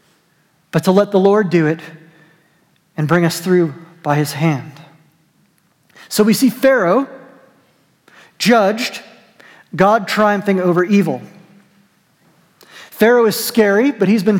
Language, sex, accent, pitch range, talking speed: English, male, American, 170-220 Hz, 120 wpm